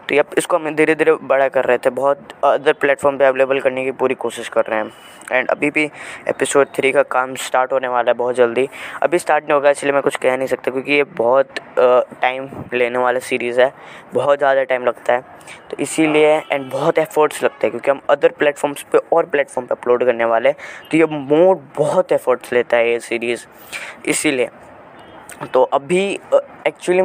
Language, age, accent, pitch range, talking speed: Hindi, 20-39, native, 125-150 Hz, 200 wpm